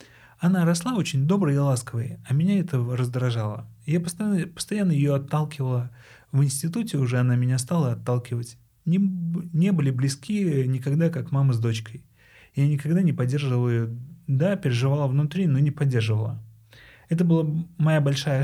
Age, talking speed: 30-49, 150 wpm